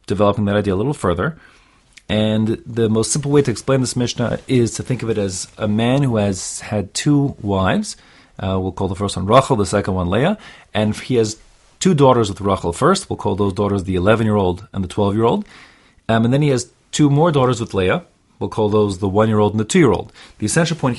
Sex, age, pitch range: male, 30-49, 100-130 Hz